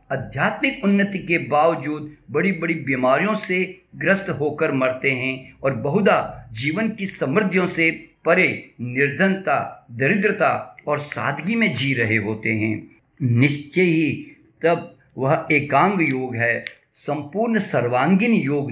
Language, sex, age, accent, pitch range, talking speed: Hindi, male, 50-69, native, 135-185 Hz, 120 wpm